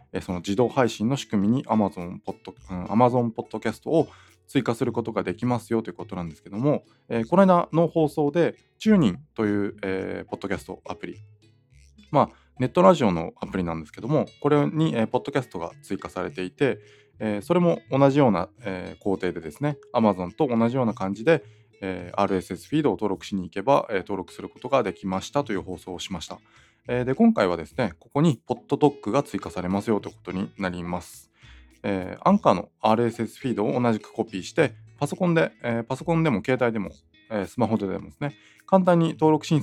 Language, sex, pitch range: Japanese, male, 95-145 Hz